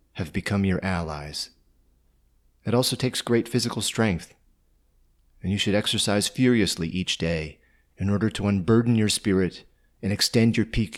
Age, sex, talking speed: 30-49, male, 150 wpm